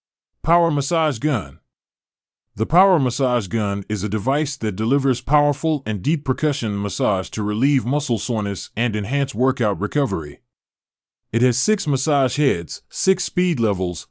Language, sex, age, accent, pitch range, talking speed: English, male, 30-49, American, 110-145 Hz, 140 wpm